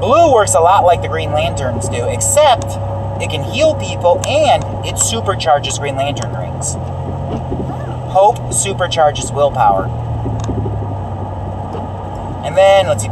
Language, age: English, 30-49